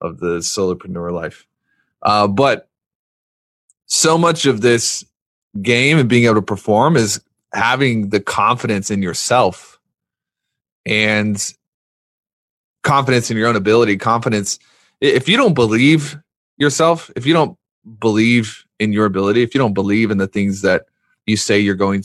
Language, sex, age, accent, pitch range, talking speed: English, male, 20-39, American, 100-125 Hz, 145 wpm